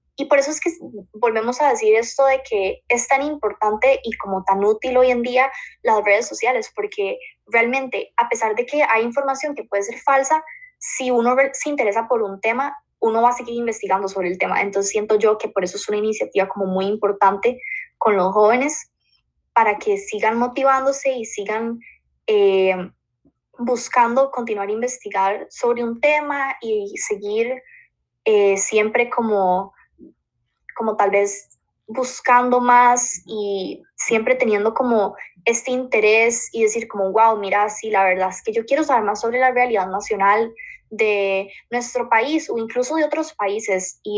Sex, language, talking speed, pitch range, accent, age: female, Spanish, 170 wpm, 205-260 Hz, Colombian, 10-29